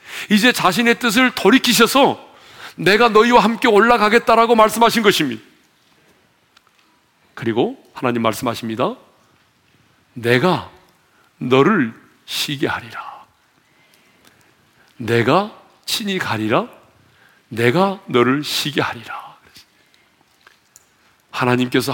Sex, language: male, Korean